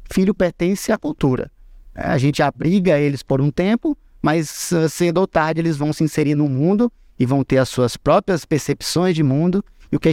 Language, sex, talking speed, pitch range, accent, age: Portuguese, male, 200 wpm, 130-170 Hz, Brazilian, 20-39